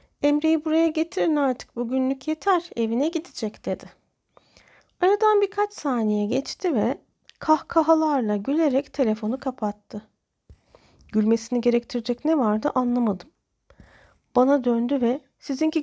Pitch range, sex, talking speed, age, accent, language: 225-300 Hz, female, 105 wpm, 40-59, native, Turkish